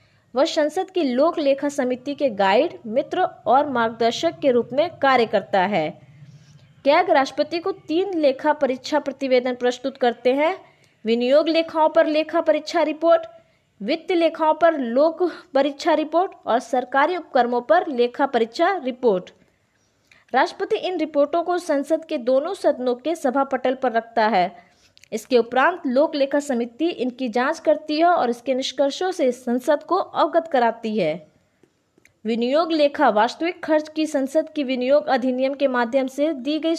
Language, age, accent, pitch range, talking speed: Hindi, 20-39, native, 245-320 Hz, 150 wpm